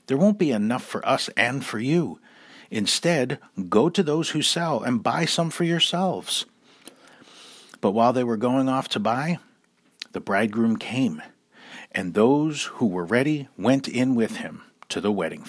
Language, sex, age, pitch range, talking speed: English, male, 50-69, 100-165 Hz, 165 wpm